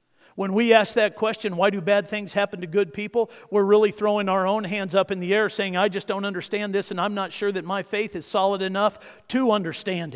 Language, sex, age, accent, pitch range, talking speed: English, male, 50-69, American, 175-215 Hz, 240 wpm